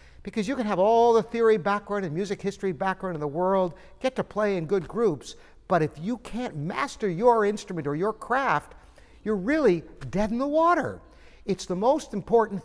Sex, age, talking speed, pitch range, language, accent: male, 60-79, 195 wpm, 160-220 Hz, English, American